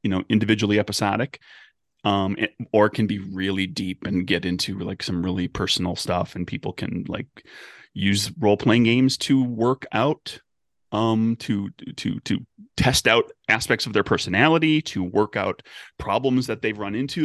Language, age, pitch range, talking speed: English, 30-49, 95-120 Hz, 165 wpm